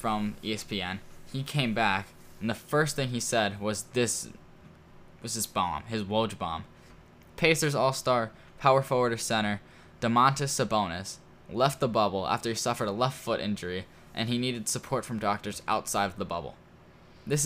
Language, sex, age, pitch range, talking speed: English, male, 10-29, 100-125 Hz, 165 wpm